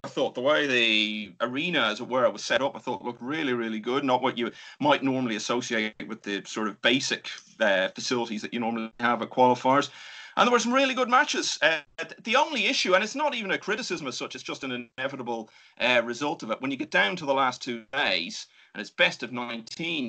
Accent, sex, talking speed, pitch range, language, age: British, male, 235 wpm, 115-135 Hz, English, 30-49